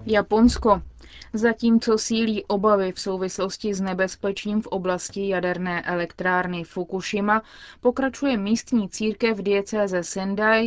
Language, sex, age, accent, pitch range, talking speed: Czech, female, 20-39, native, 190-220 Hz, 105 wpm